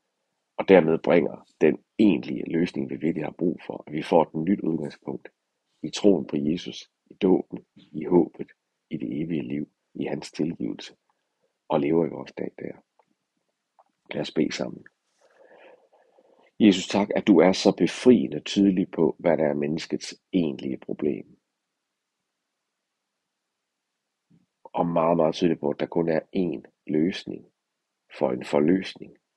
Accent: native